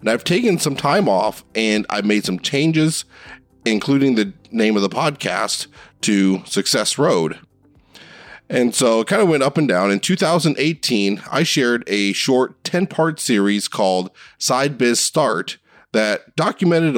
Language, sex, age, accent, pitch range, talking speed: English, male, 30-49, American, 105-160 Hz, 155 wpm